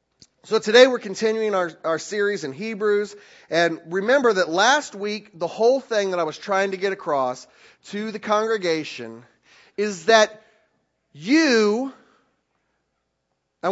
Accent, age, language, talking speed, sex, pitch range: American, 40-59, English, 135 wpm, male, 170-250 Hz